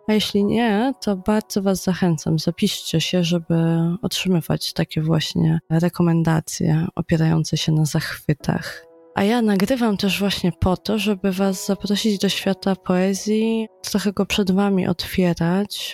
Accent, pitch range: native, 160-190 Hz